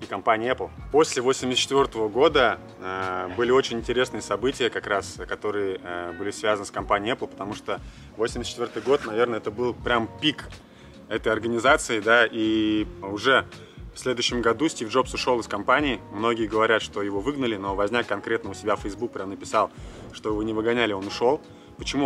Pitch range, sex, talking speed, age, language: 105-130 Hz, male, 175 wpm, 20-39, Russian